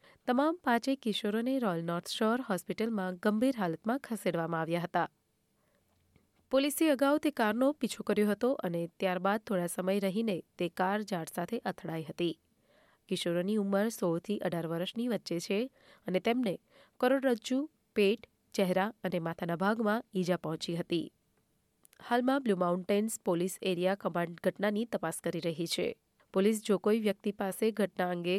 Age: 30-49